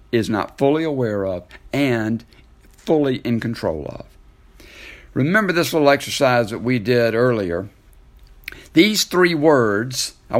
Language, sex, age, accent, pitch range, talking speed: English, male, 60-79, American, 115-160 Hz, 125 wpm